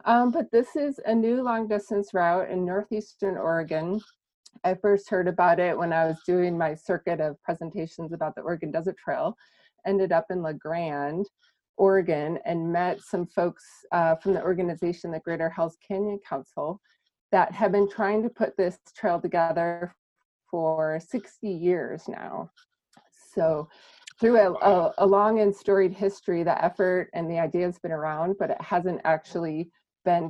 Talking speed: 165 wpm